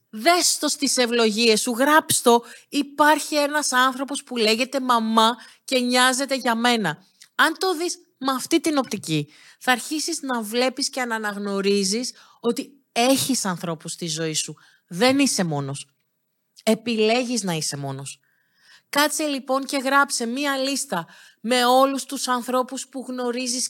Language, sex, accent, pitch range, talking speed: Greek, female, native, 210-280 Hz, 135 wpm